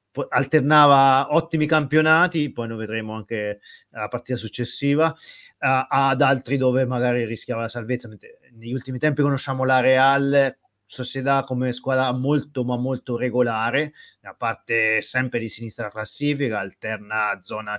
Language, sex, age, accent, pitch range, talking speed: Italian, male, 30-49, native, 115-150 Hz, 135 wpm